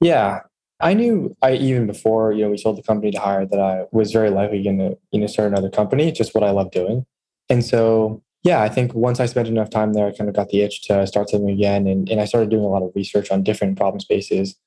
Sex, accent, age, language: male, American, 10-29, English